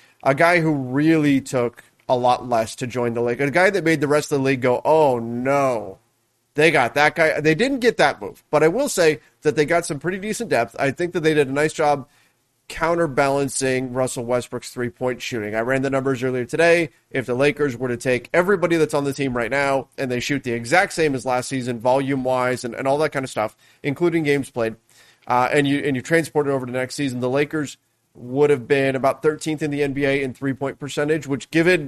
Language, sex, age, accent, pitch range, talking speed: English, male, 30-49, American, 130-155 Hz, 235 wpm